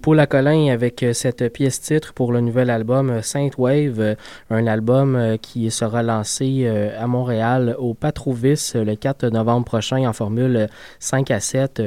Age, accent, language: 20-39, Canadian, French